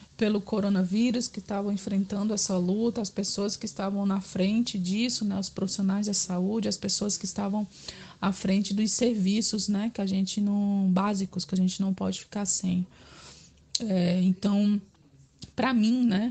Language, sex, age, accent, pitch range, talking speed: Portuguese, female, 20-39, Brazilian, 190-225 Hz, 165 wpm